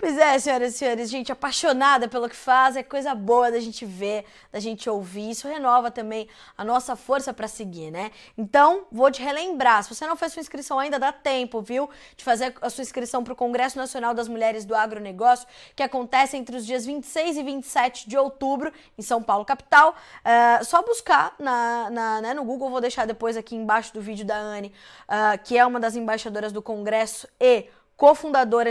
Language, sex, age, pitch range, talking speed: Portuguese, female, 20-39, 220-270 Hz, 200 wpm